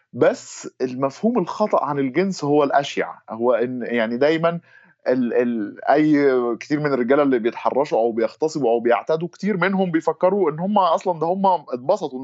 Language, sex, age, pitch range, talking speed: Arabic, male, 20-39, 120-165 Hz, 150 wpm